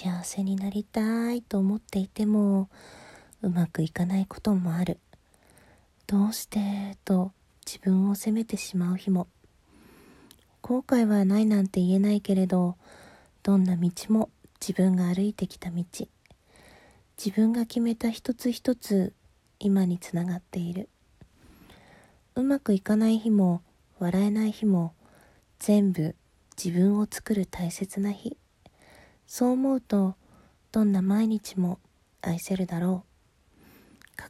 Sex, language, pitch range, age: female, Japanese, 180-220 Hz, 40-59